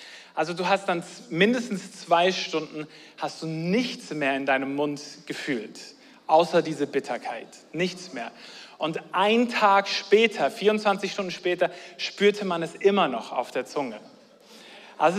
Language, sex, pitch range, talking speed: German, male, 160-205 Hz, 140 wpm